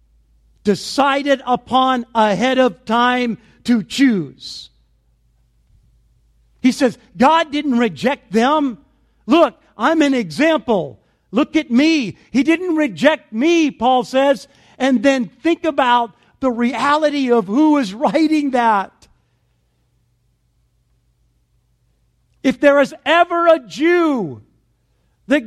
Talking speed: 105 wpm